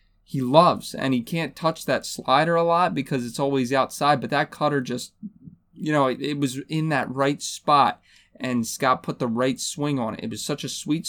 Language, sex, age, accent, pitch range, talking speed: English, male, 20-39, American, 125-145 Hz, 215 wpm